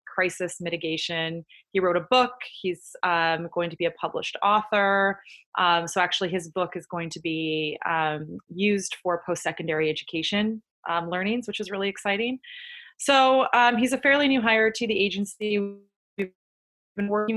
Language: English